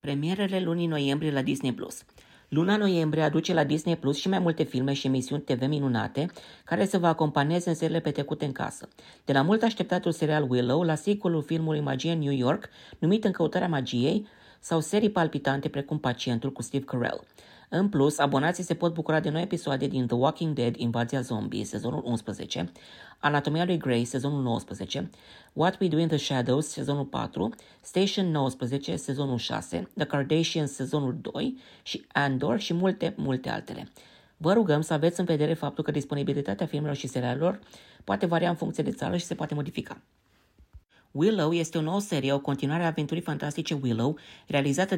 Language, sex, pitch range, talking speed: Romanian, female, 140-170 Hz, 175 wpm